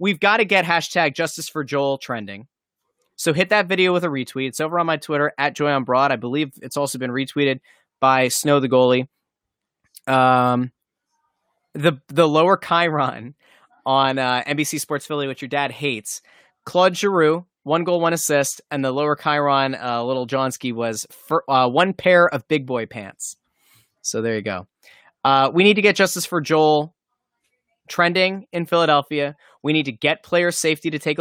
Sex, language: male, English